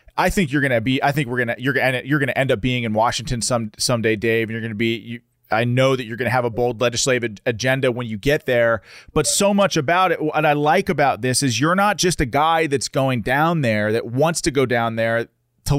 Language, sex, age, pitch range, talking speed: English, male, 30-49, 120-155 Hz, 275 wpm